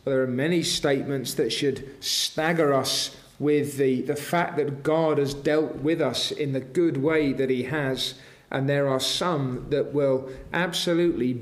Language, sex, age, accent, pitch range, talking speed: English, male, 40-59, British, 130-160 Hz, 170 wpm